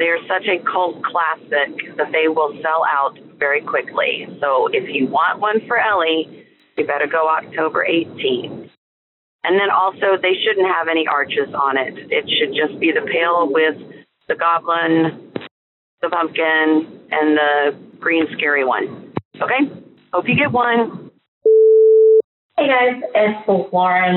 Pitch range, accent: 165-220 Hz, American